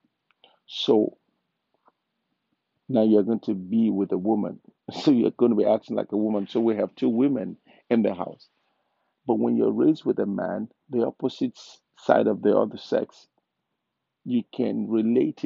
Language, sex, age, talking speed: English, male, 50-69, 165 wpm